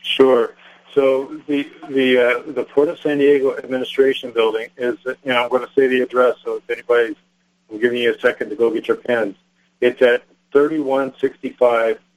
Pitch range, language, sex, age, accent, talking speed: 115-140 Hz, English, male, 50-69, American, 180 wpm